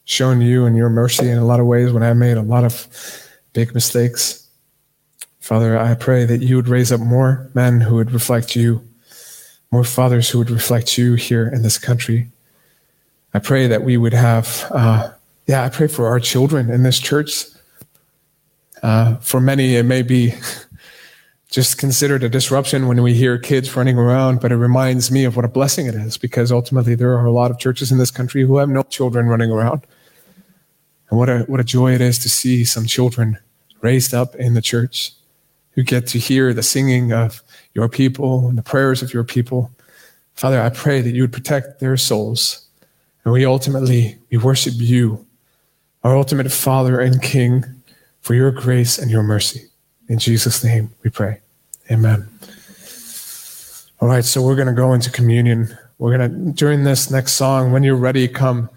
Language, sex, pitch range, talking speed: English, male, 120-130 Hz, 190 wpm